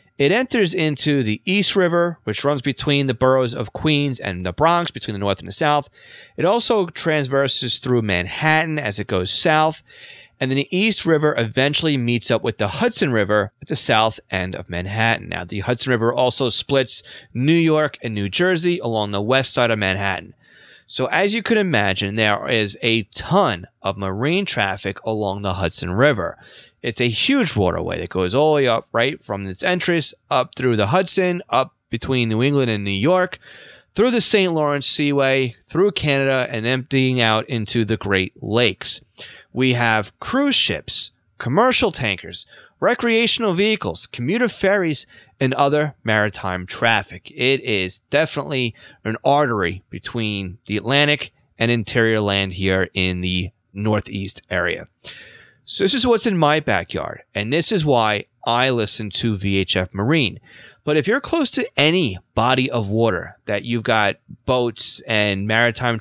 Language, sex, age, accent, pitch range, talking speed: English, male, 30-49, American, 105-150 Hz, 165 wpm